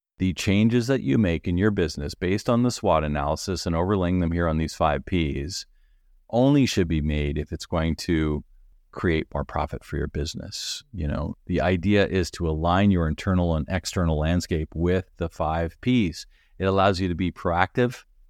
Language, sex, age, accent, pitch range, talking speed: English, male, 40-59, American, 85-105 Hz, 185 wpm